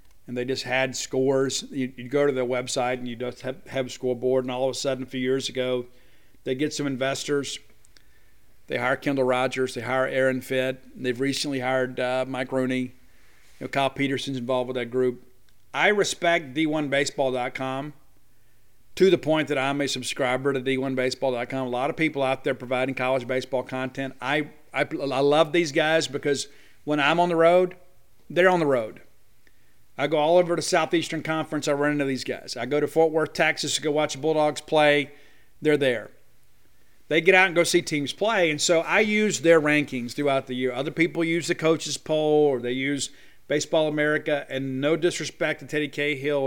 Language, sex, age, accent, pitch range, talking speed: English, male, 50-69, American, 130-150 Hz, 190 wpm